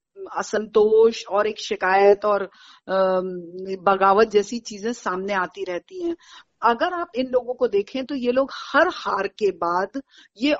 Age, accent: 50-69, native